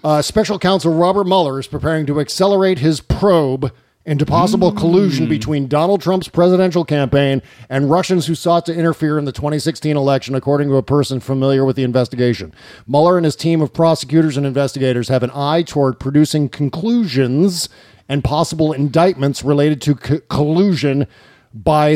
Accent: American